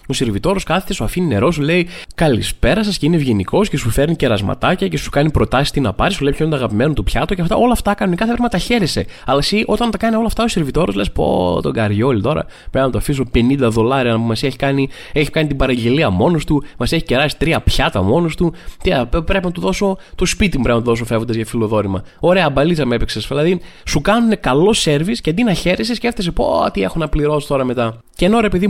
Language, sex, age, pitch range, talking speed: Greek, male, 20-39, 125-190 Hz, 220 wpm